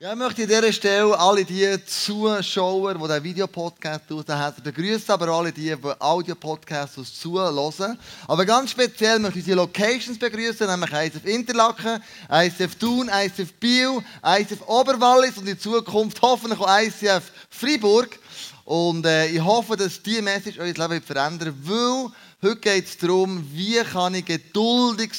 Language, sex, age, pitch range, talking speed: German, male, 20-39, 165-215 Hz, 155 wpm